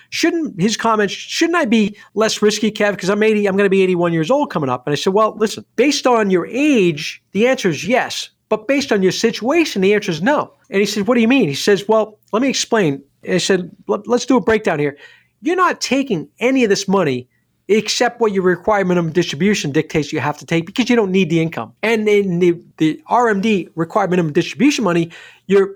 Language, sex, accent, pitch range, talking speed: English, male, American, 170-220 Hz, 235 wpm